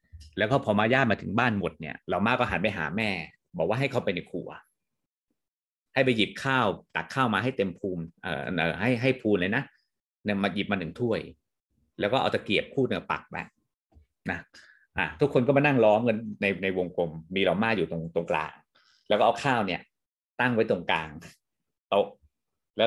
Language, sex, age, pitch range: Thai, male, 30-49, 85-125 Hz